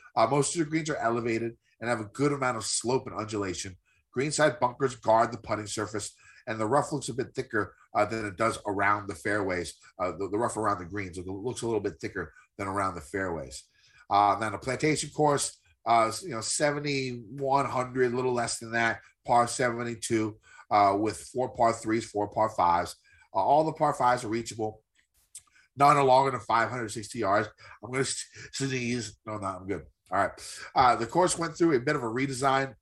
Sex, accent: male, American